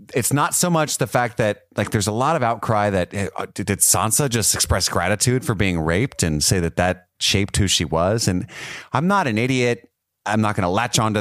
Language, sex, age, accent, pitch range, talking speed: English, male, 30-49, American, 85-110 Hz, 220 wpm